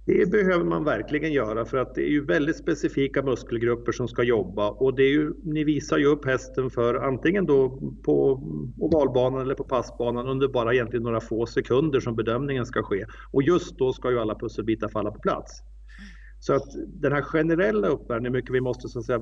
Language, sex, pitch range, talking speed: Swedish, male, 115-140 Hz, 200 wpm